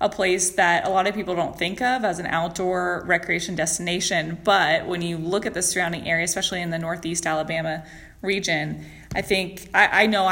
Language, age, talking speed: English, 20-39, 200 wpm